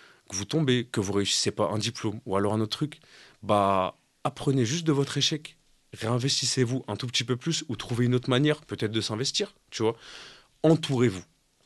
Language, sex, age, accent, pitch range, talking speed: French, male, 30-49, French, 105-140 Hz, 195 wpm